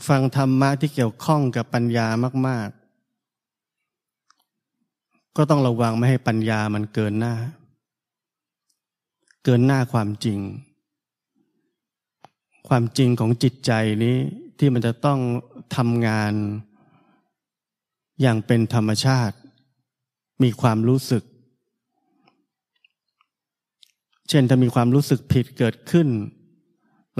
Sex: male